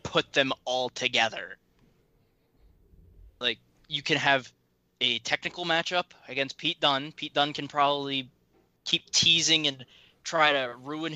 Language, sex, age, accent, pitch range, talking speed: English, male, 20-39, American, 135-180 Hz, 130 wpm